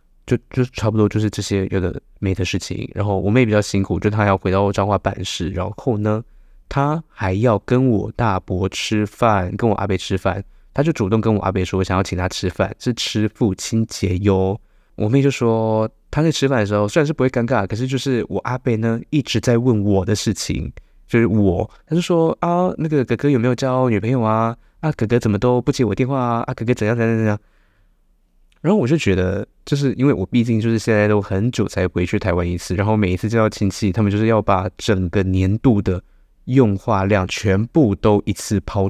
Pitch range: 95-115 Hz